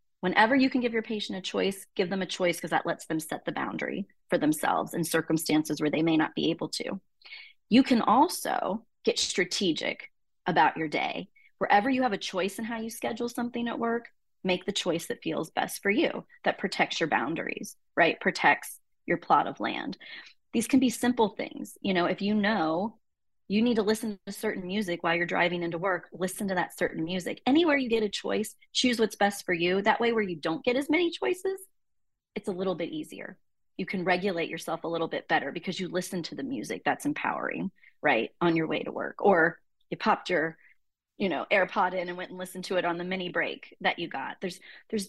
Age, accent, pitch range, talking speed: 30-49, American, 175-240 Hz, 220 wpm